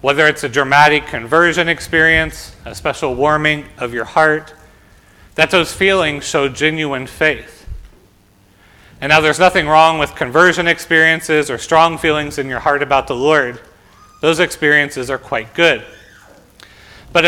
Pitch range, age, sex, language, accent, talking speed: 125-165 Hz, 40-59, male, English, American, 140 wpm